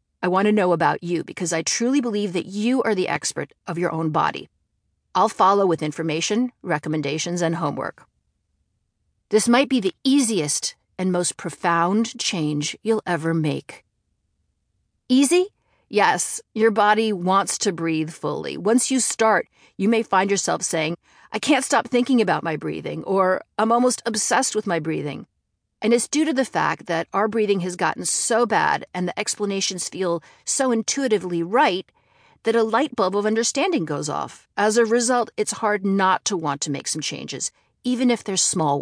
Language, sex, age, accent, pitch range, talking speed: English, female, 50-69, American, 165-230 Hz, 175 wpm